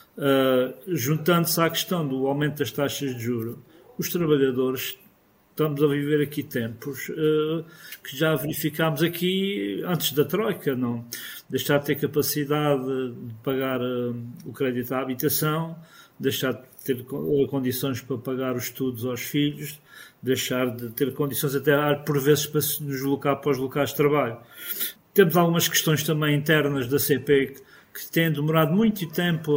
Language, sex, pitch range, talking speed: Portuguese, male, 135-155 Hz, 150 wpm